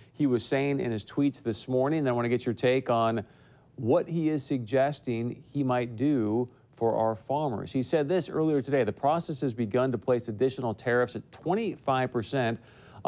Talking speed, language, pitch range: 190 wpm, English, 120-140 Hz